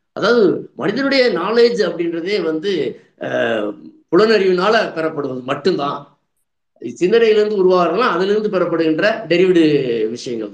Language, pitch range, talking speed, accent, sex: Tamil, 160-235 Hz, 95 wpm, native, male